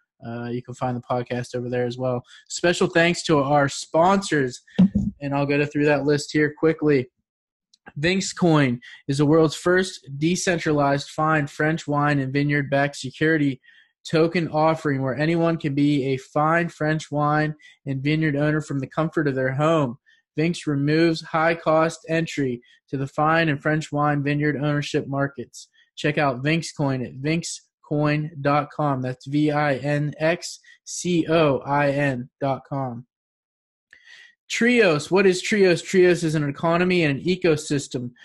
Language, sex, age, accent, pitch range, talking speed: English, male, 20-39, American, 140-165 Hz, 145 wpm